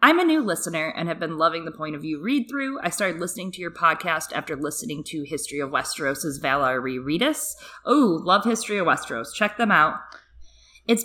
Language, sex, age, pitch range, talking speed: English, female, 20-39, 155-195 Hz, 200 wpm